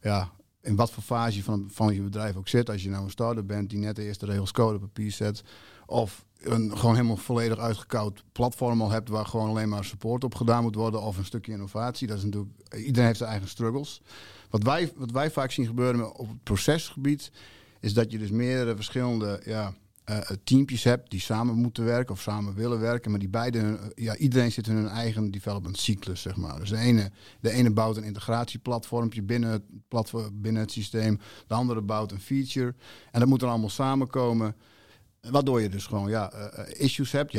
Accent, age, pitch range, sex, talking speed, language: Dutch, 50-69, 105-120 Hz, male, 210 wpm, Dutch